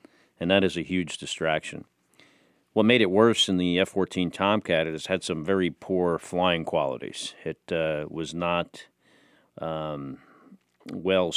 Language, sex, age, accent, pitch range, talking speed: English, male, 40-59, American, 80-95 Hz, 145 wpm